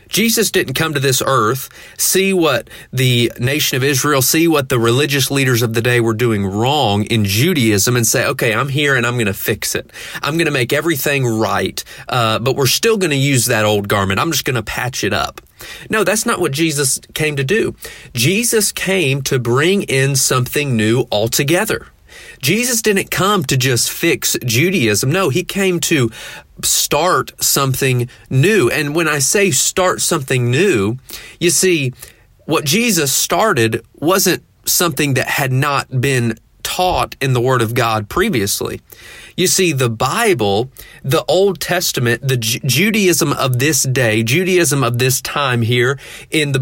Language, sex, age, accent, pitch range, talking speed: English, male, 30-49, American, 120-165 Hz, 170 wpm